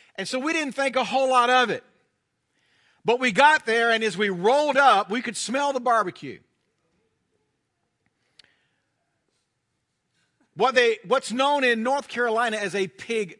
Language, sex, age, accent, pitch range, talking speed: English, male, 50-69, American, 190-255 Hz, 150 wpm